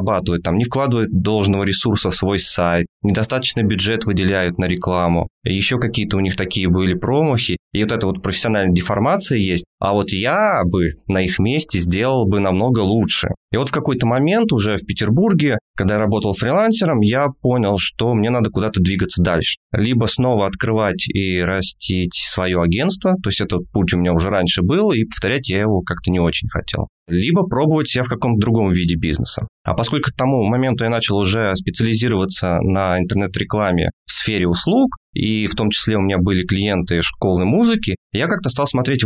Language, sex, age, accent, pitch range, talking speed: Russian, male, 20-39, native, 95-125 Hz, 180 wpm